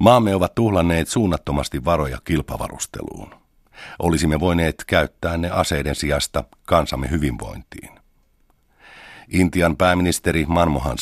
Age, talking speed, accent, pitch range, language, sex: 50-69, 95 wpm, native, 70-85 Hz, Finnish, male